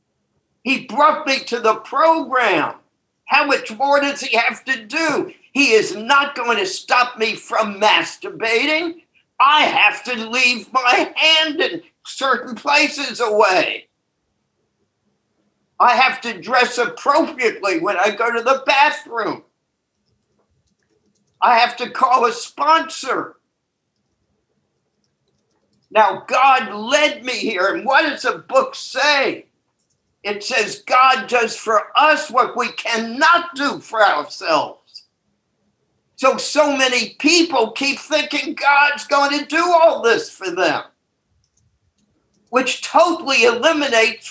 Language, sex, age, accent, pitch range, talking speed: English, male, 50-69, American, 240-300 Hz, 120 wpm